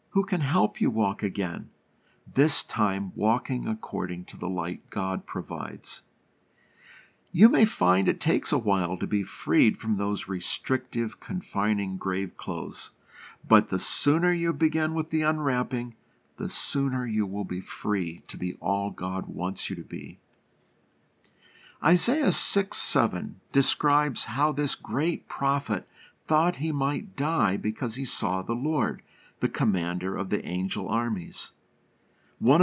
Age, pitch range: 50-69, 105-155 Hz